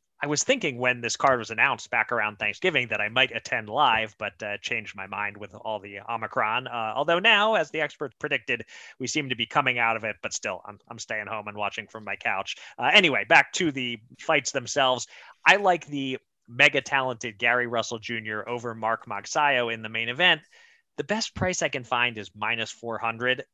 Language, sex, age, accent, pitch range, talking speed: English, male, 30-49, American, 115-155 Hz, 205 wpm